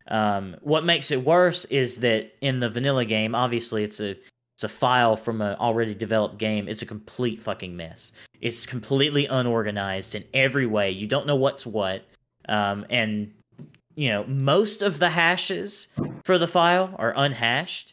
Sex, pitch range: male, 115-145 Hz